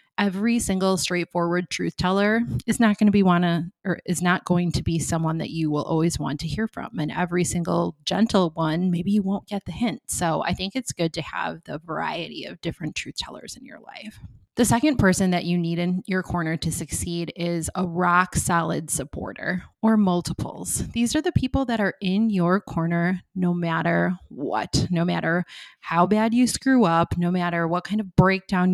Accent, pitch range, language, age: American, 170-210 Hz, English, 30-49